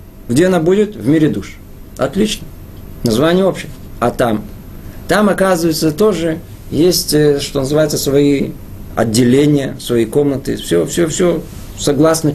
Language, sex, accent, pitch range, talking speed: Russian, male, native, 110-175 Hz, 120 wpm